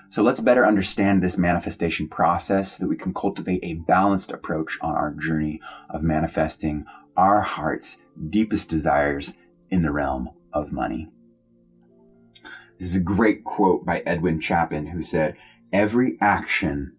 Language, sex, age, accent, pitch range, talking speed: English, male, 30-49, American, 75-95 Hz, 145 wpm